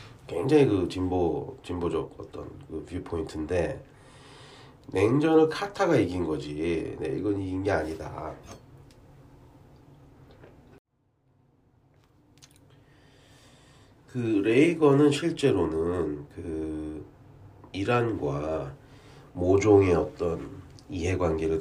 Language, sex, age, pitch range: Korean, male, 40-59, 85-135 Hz